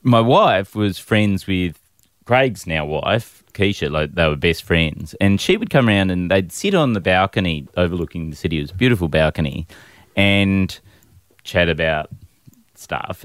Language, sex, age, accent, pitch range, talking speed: English, male, 30-49, Australian, 90-120 Hz, 165 wpm